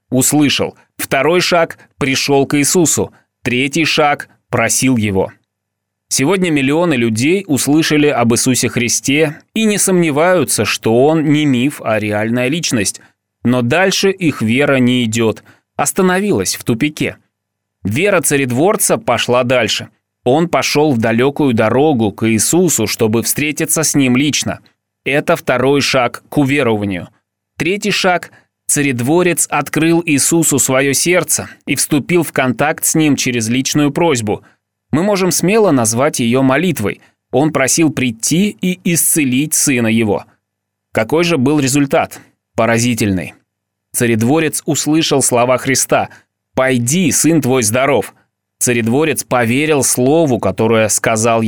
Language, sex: Russian, male